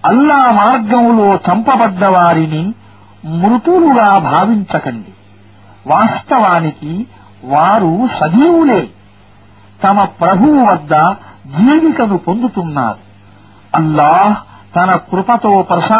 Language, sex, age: Arabic, male, 50-69